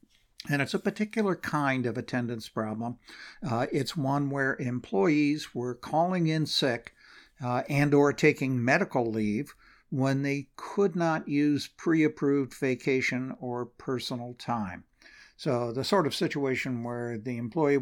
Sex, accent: male, American